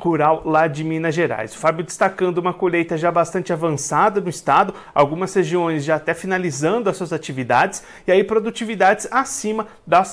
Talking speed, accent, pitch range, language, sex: 165 wpm, Brazilian, 165-205 Hz, Portuguese, male